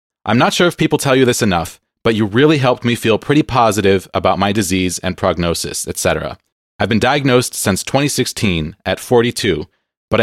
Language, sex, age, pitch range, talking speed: English, male, 30-49, 95-135 Hz, 180 wpm